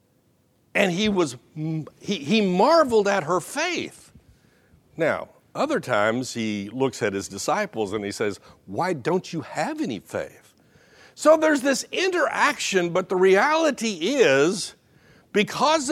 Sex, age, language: male, 60-79, English